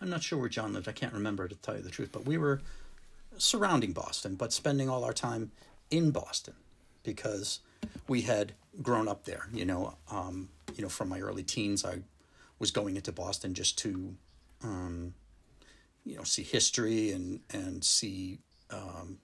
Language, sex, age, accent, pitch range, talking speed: English, male, 40-59, American, 95-135 Hz, 180 wpm